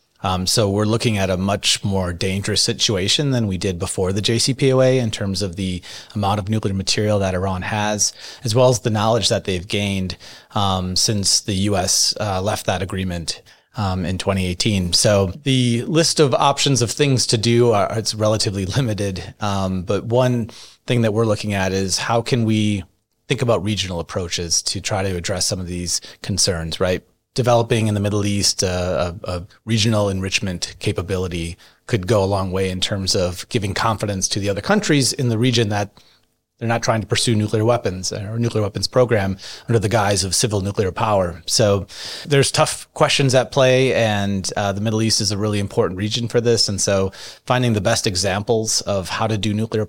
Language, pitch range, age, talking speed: English, 95-115 Hz, 30-49, 190 wpm